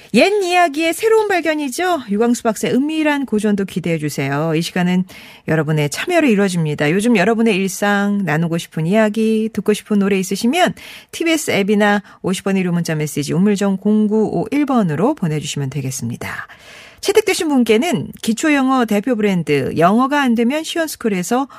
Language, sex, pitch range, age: Korean, female, 195-280 Hz, 40-59